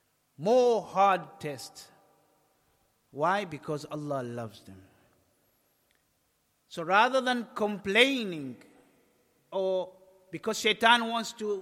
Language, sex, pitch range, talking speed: English, male, 150-215 Hz, 90 wpm